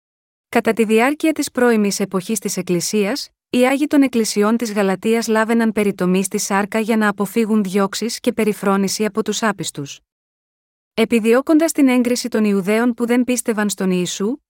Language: Greek